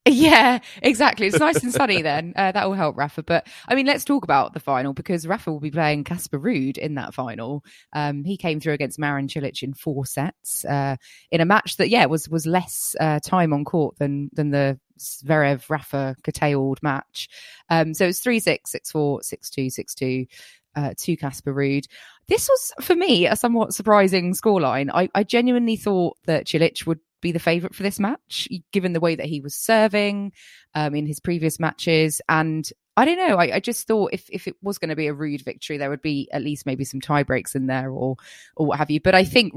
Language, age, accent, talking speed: English, 20-39, British, 210 wpm